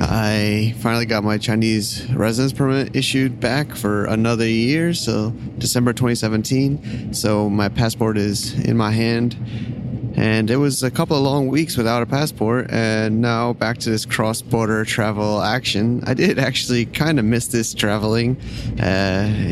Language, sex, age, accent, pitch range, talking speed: English, male, 30-49, American, 110-125 Hz, 155 wpm